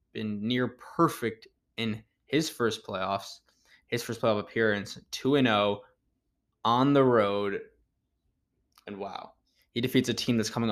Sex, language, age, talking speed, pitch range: male, English, 10-29, 130 wpm, 105-120 Hz